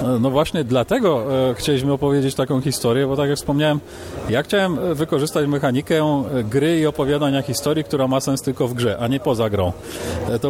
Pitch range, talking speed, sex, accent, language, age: 130-150 Hz, 170 wpm, male, native, Polish, 40-59